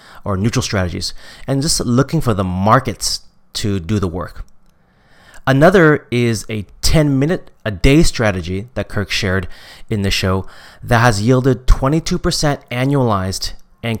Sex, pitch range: male, 100-140 Hz